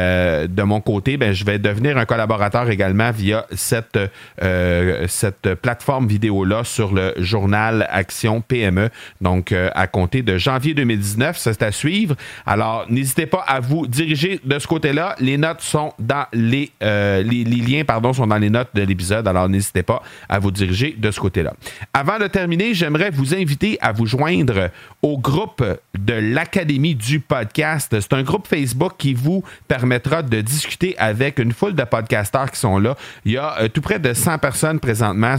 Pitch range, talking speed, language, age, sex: 110-150 Hz, 185 wpm, French, 40-59, male